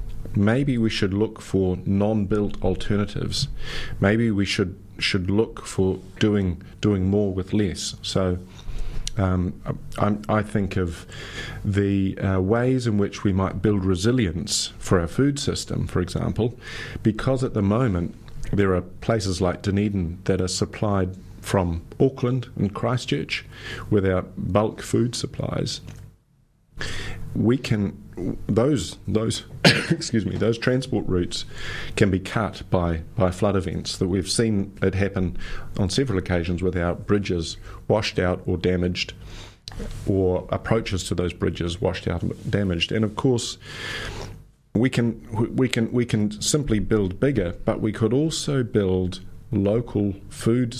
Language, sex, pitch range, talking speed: English, male, 95-115 Hz, 140 wpm